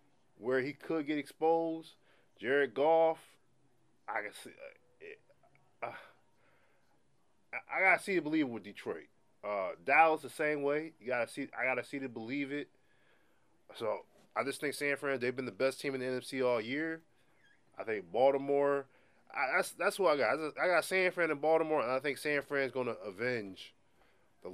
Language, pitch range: English, 125-160 Hz